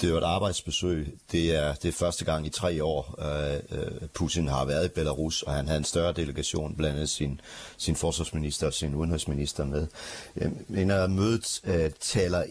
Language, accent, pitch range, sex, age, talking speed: Danish, native, 75-90 Hz, male, 40-59, 185 wpm